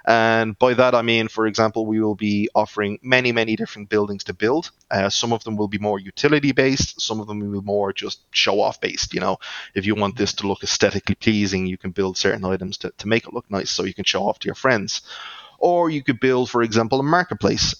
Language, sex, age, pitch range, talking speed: English, male, 20-39, 100-115 Hz, 245 wpm